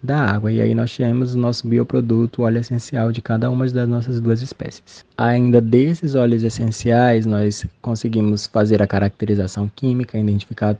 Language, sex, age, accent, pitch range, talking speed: Portuguese, male, 20-39, Brazilian, 110-125 Hz, 160 wpm